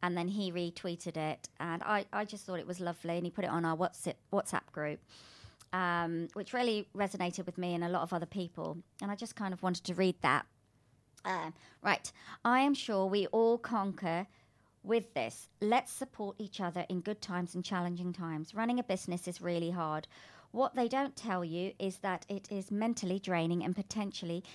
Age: 40-59